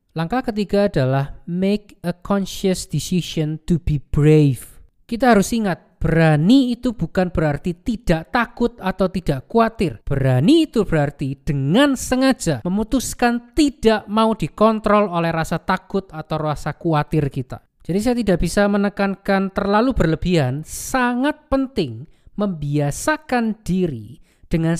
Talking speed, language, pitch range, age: 120 wpm, Indonesian, 160-220 Hz, 20-39